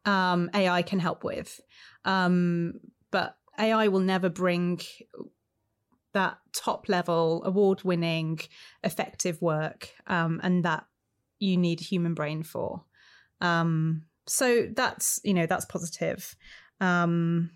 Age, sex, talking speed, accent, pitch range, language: 30-49, female, 115 wpm, British, 175-215 Hz, English